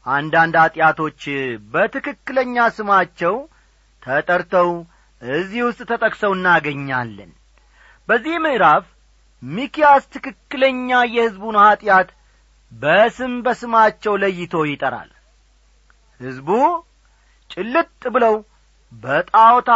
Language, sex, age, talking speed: Amharic, male, 40-59, 65 wpm